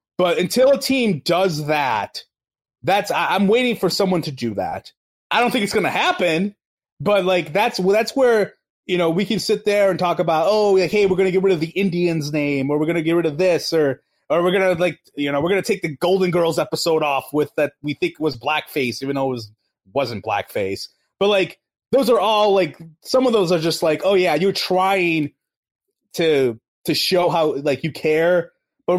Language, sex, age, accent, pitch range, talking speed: English, male, 30-49, American, 145-190 Hz, 220 wpm